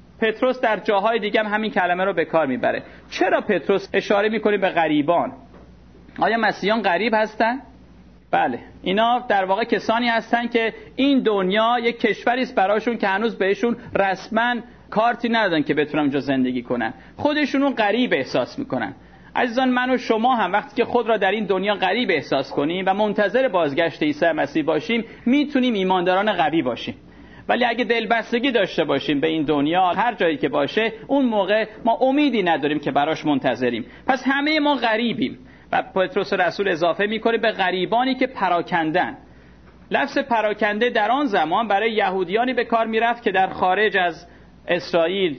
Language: Persian